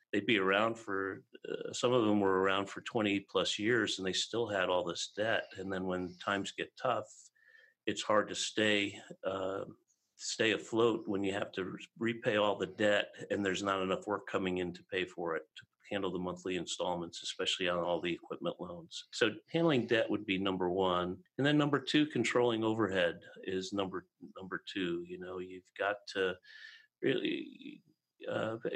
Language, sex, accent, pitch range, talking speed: English, male, American, 95-115 Hz, 185 wpm